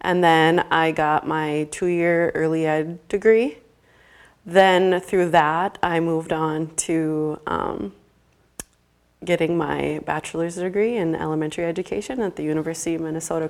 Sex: female